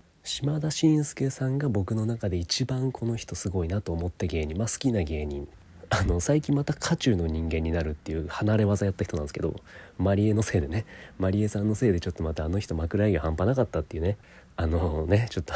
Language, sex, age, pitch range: Japanese, male, 30-49, 80-110 Hz